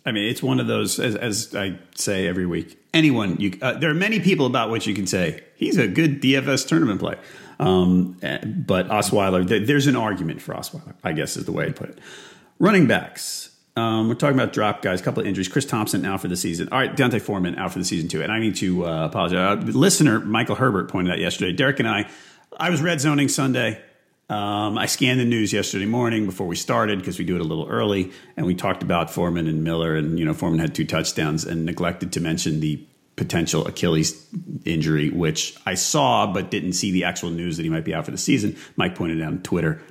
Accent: American